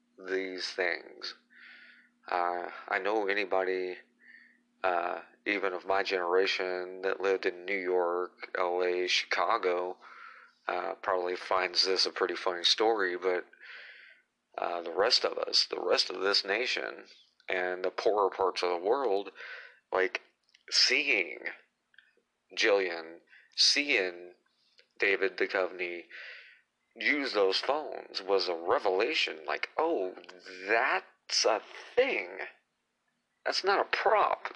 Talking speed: 115 wpm